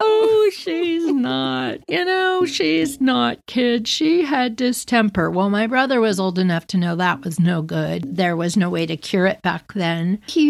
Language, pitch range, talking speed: English, 170-225 Hz, 190 wpm